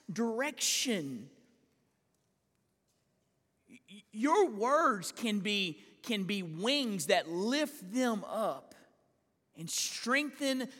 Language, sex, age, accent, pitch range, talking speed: English, male, 40-59, American, 155-245 Hz, 80 wpm